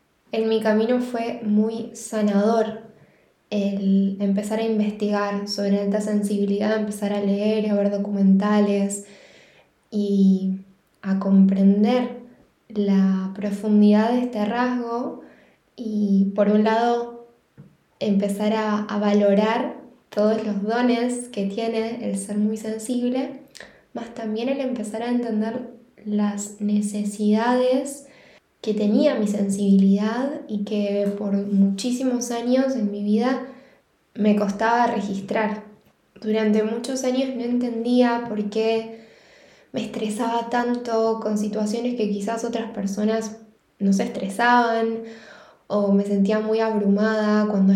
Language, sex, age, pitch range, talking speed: Spanish, female, 10-29, 205-235 Hz, 115 wpm